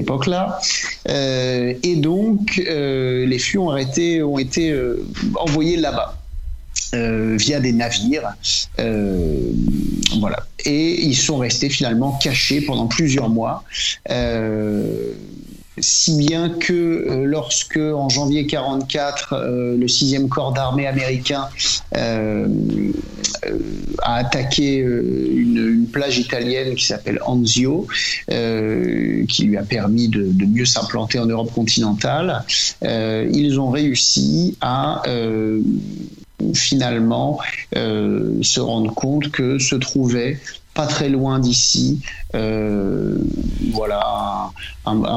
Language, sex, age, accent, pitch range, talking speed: French, male, 50-69, French, 110-140 Hz, 120 wpm